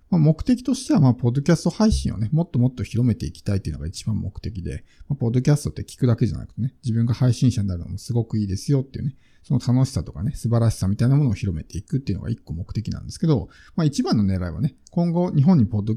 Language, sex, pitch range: Japanese, male, 105-140 Hz